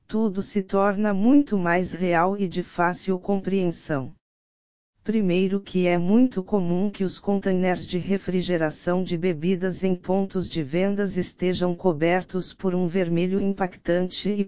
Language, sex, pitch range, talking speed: Portuguese, female, 175-195 Hz, 135 wpm